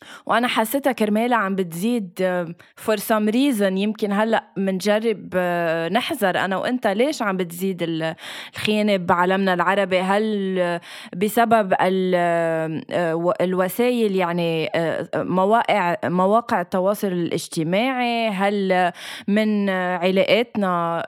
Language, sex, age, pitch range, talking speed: Arabic, female, 20-39, 185-235 Hz, 90 wpm